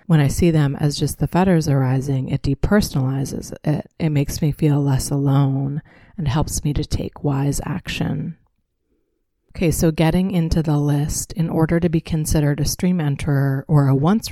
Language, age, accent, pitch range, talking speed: English, 30-49, American, 140-160 Hz, 175 wpm